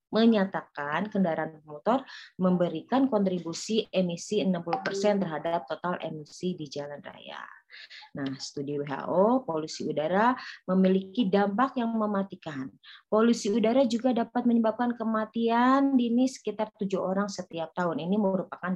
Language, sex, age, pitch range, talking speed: Indonesian, female, 20-39, 160-210 Hz, 115 wpm